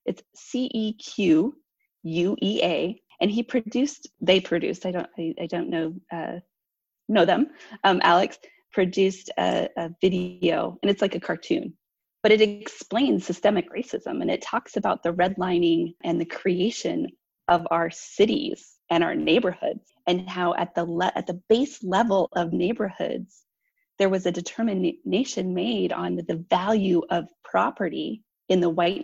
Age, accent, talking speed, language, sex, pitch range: 20-39, American, 155 wpm, English, female, 170-215 Hz